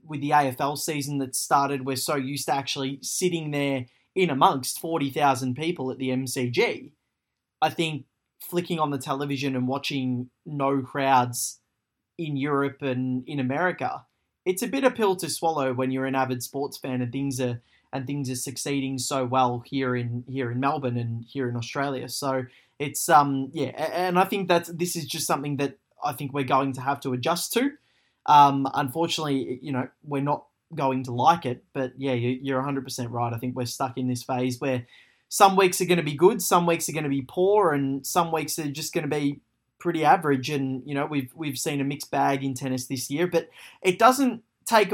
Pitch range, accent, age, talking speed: 130-160 Hz, Australian, 20-39, 205 wpm